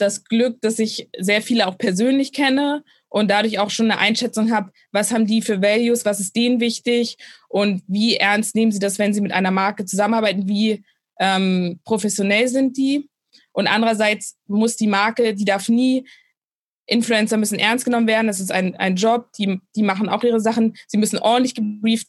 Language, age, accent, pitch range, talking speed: German, 20-39, German, 205-235 Hz, 190 wpm